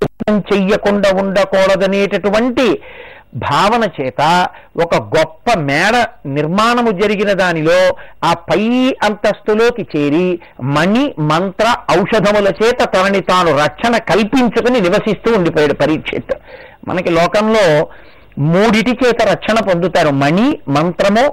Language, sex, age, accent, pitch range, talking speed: Telugu, male, 50-69, native, 180-230 Hz, 95 wpm